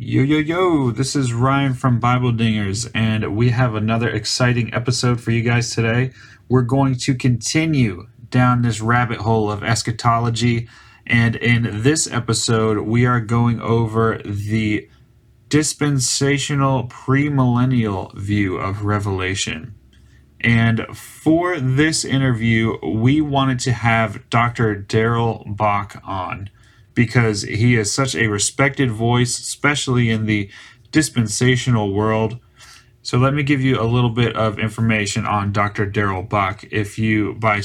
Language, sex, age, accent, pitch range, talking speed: English, male, 30-49, American, 110-130 Hz, 135 wpm